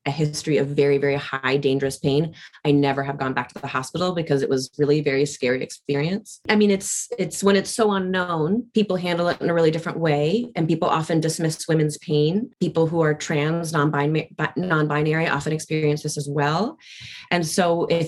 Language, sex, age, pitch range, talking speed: English, female, 20-39, 145-170 Hz, 200 wpm